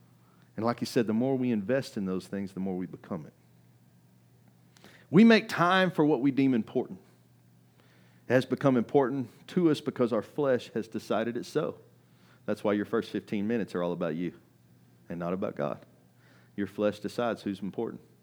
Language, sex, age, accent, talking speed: English, male, 40-59, American, 185 wpm